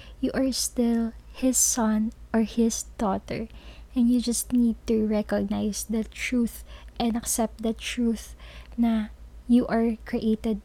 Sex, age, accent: female, 20-39, native